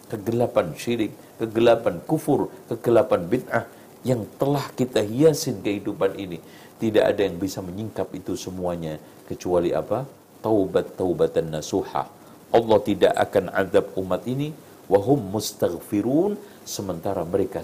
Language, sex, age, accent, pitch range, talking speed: Indonesian, male, 50-69, native, 120-165 Hz, 110 wpm